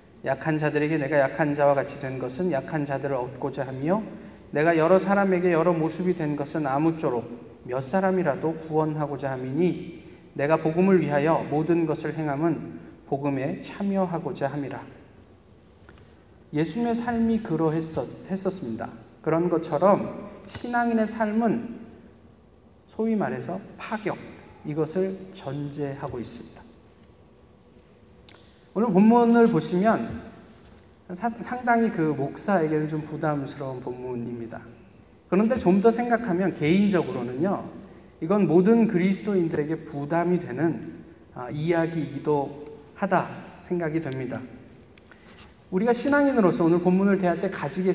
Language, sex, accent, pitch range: Korean, male, native, 140-190 Hz